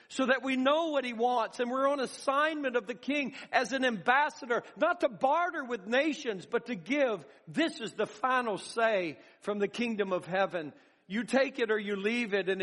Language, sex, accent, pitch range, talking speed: English, male, American, 205-255 Hz, 205 wpm